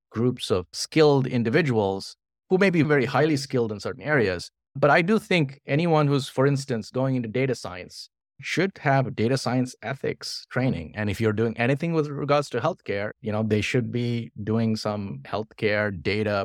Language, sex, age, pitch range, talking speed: English, male, 30-49, 110-145 Hz, 180 wpm